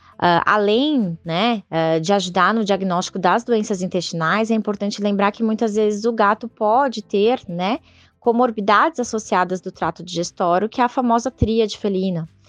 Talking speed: 165 wpm